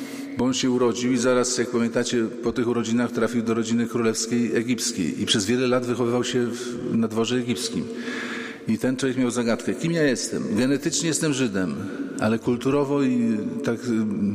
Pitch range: 115-155 Hz